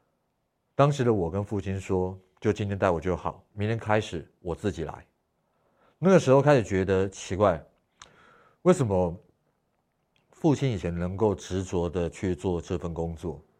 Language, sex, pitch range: Chinese, male, 85-110 Hz